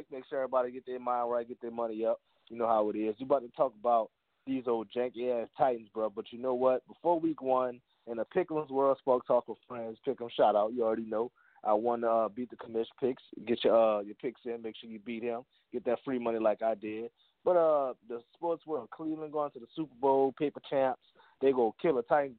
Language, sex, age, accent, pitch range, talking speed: English, male, 20-39, American, 115-140 Hz, 250 wpm